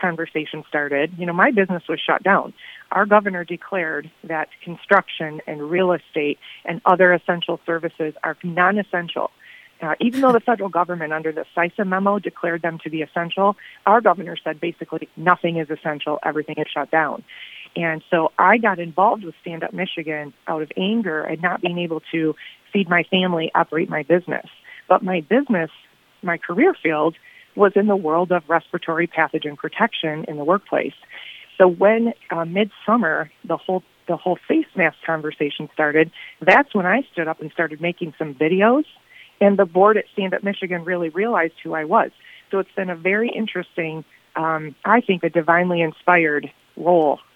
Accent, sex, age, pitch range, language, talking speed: American, female, 30-49, 160-190 Hz, English, 170 wpm